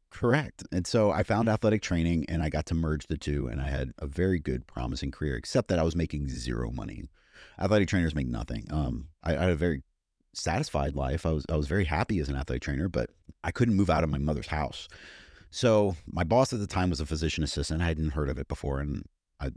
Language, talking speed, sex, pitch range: English, 240 wpm, male, 70-90 Hz